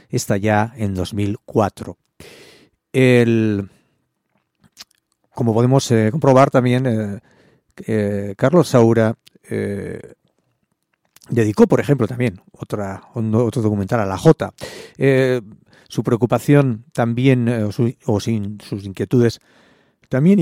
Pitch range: 105-125 Hz